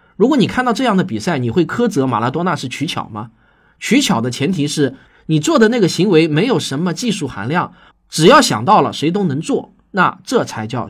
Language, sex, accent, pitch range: Chinese, male, native, 130-215 Hz